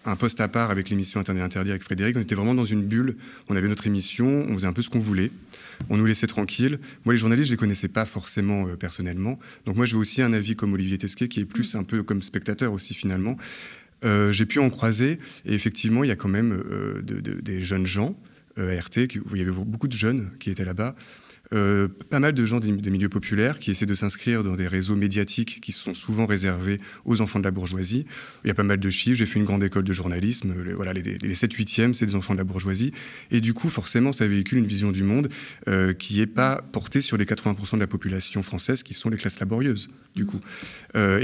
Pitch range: 100-120 Hz